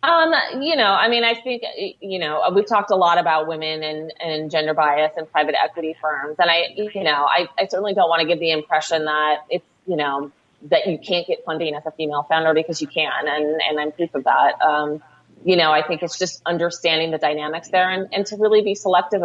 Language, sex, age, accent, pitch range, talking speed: English, female, 30-49, American, 155-190 Hz, 235 wpm